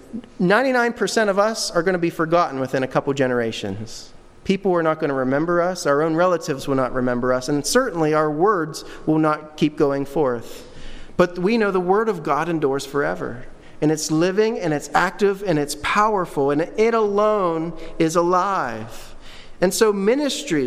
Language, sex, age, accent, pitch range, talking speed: English, male, 40-59, American, 155-215 Hz, 175 wpm